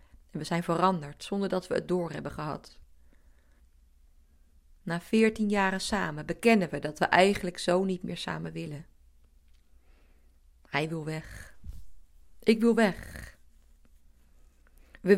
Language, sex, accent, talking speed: Dutch, female, Dutch, 125 wpm